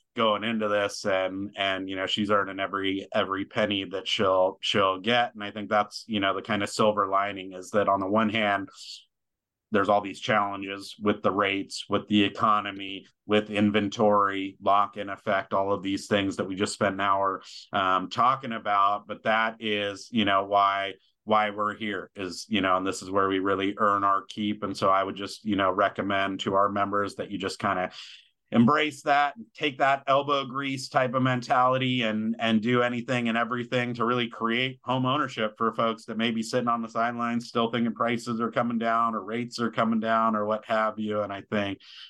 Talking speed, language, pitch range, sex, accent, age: 210 wpm, English, 95-115 Hz, male, American, 30-49